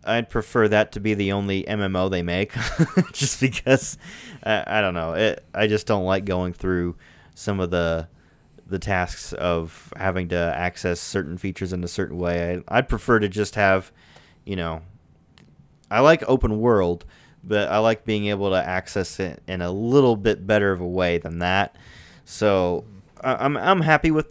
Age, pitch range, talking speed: 30-49, 90-115 Hz, 185 wpm